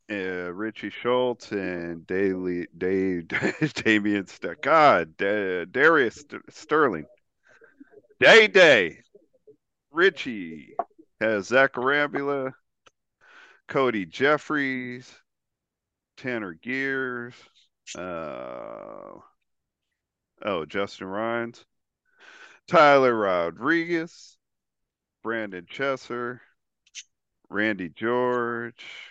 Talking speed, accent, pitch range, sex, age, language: 65 wpm, American, 95-130 Hz, male, 40-59, English